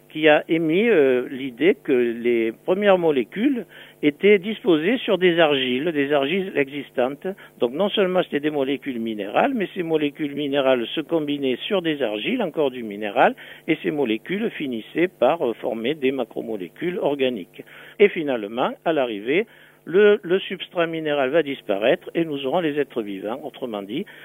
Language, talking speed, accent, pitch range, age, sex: French, 155 wpm, French, 120-170 Hz, 60-79, male